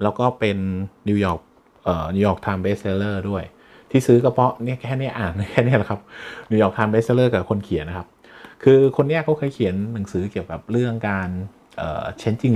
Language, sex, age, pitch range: Thai, male, 20-39, 95-115 Hz